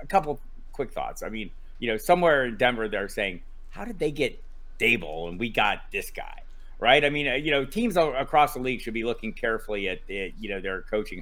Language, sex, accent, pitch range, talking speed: English, male, American, 105-125 Hz, 225 wpm